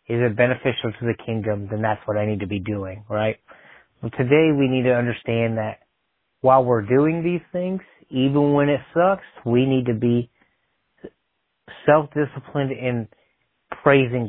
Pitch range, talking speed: 115-140 Hz, 155 wpm